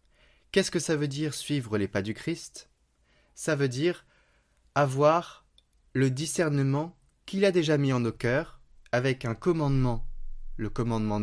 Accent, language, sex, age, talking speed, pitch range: French, French, male, 20-39, 150 wpm, 110-145 Hz